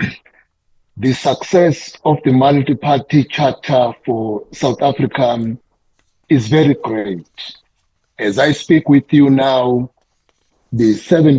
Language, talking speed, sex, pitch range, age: English, 105 wpm, male, 125-150 Hz, 50-69